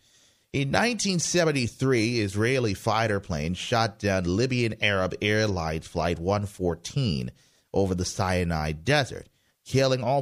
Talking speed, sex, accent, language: 105 wpm, male, American, English